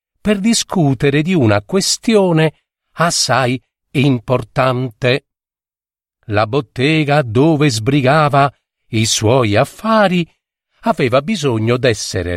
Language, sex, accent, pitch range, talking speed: Italian, male, native, 110-155 Hz, 80 wpm